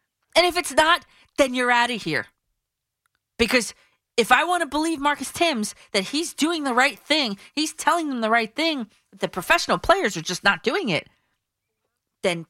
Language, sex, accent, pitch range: English, female, American, 200-300 Hz